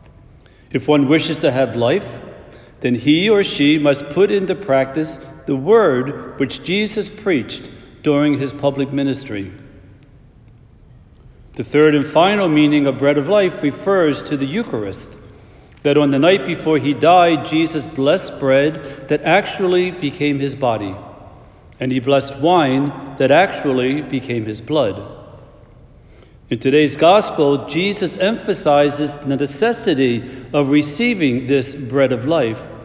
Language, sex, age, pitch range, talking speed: English, male, 60-79, 135-165 Hz, 135 wpm